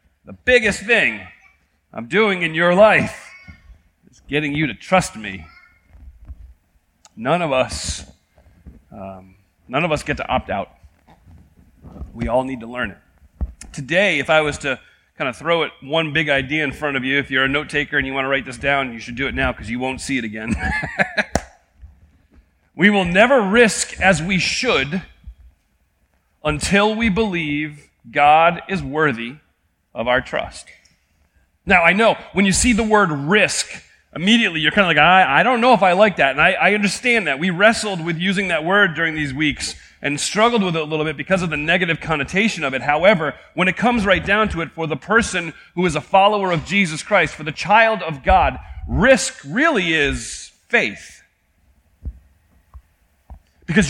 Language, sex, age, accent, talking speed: English, male, 40-59, American, 185 wpm